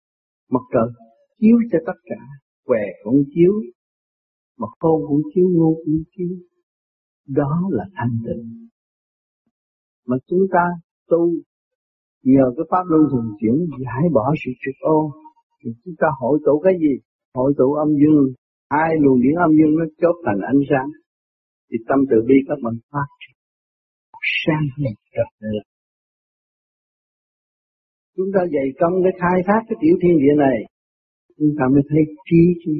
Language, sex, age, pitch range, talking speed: Vietnamese, male, 50-69, 130-175 Hz, 155 wpm